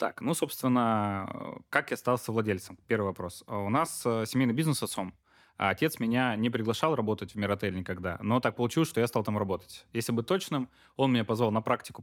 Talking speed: 200 wpm